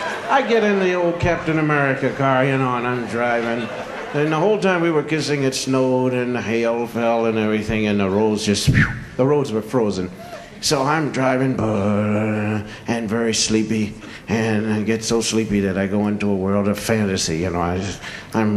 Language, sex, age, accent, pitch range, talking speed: English, male, 60-79, American, 100-150 Hz, 185 wpm